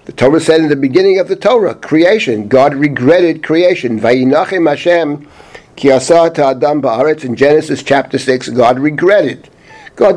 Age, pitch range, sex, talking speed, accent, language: 50-69, 130-160 Hz, male, 125 wpm, American, English